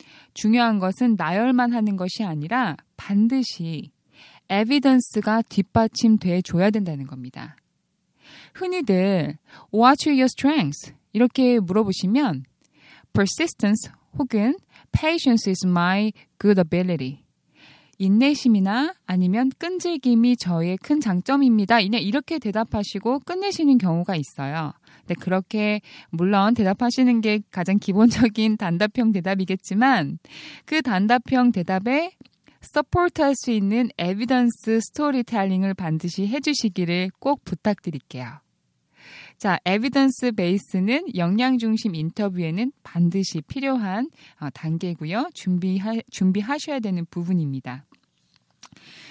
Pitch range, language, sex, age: 185-250 Hz, Korean, female, 20-39